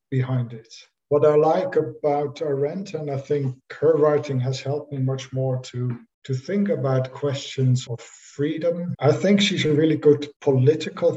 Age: 50-69